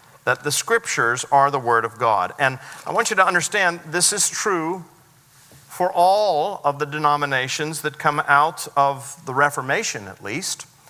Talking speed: 165 wpm